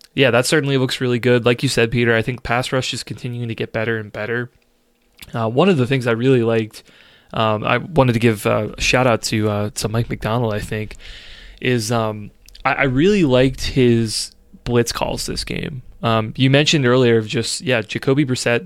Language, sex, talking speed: English, male, 205 wpm